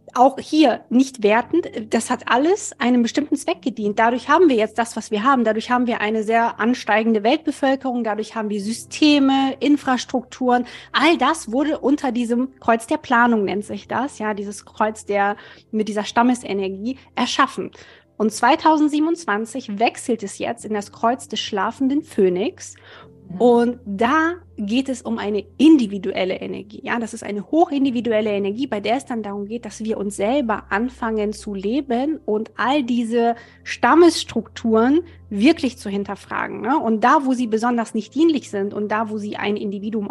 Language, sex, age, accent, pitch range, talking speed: German, female, 20-39, German, 215-270 Hz, 165 wpm